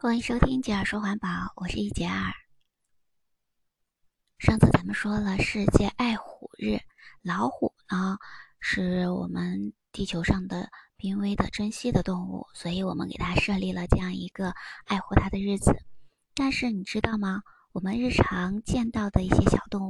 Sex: male